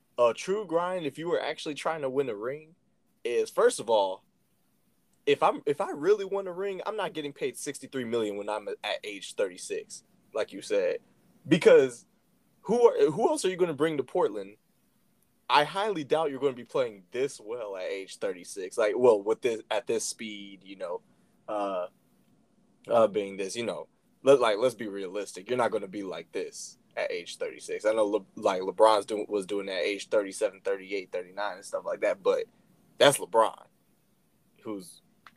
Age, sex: 20-39, male